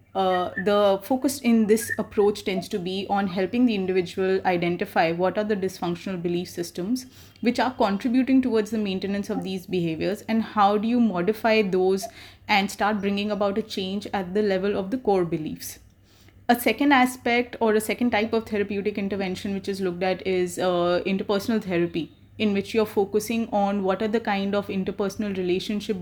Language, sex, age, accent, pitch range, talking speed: English, female, 30-49, Indian, 185-210 Hz, 180 wpm